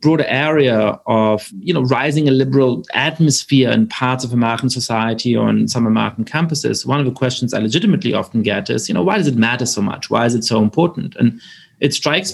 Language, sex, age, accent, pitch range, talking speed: English, male, 30-49, German, 110-145 Hz, 210 wpm